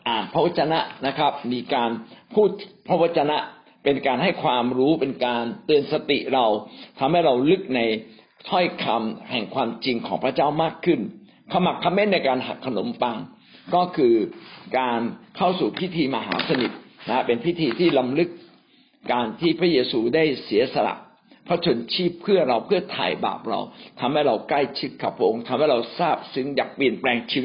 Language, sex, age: Thai, male, 60-79